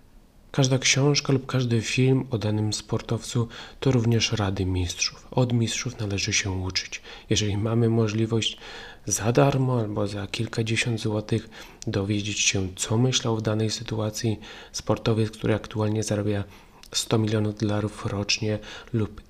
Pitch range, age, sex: 100-115 Hz, 30-49, male